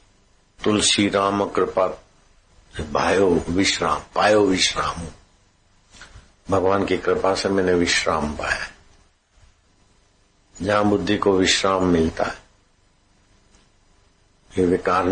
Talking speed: 85 wpm